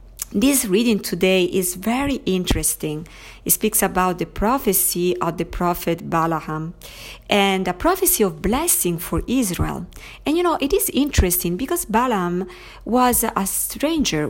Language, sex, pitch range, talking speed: English, female, 170-220 Hz, 140 wpm